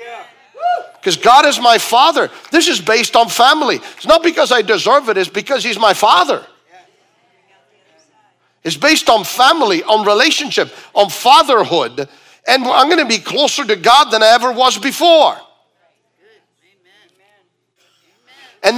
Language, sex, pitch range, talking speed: English, male, 215-305 Hz, 135 wpm